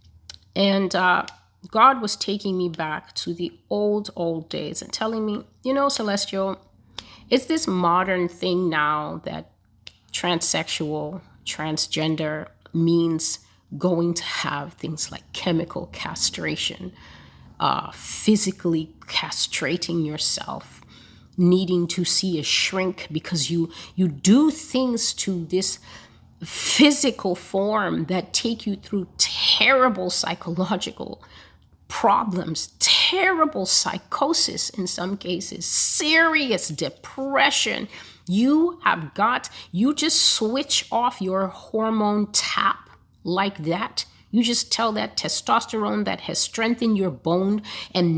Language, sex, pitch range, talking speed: English, female, 165-215 Hz, 110 wpm